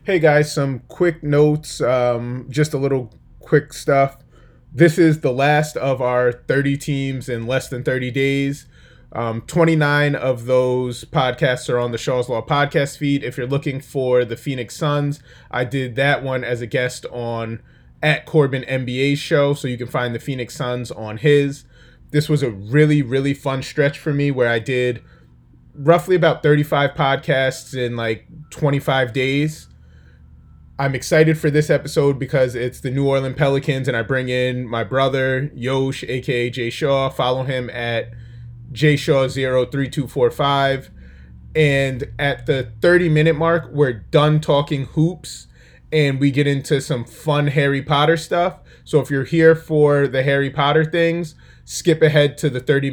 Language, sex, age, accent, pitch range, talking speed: English, male, 20-39, American, 125-150 Hz, 170 wpm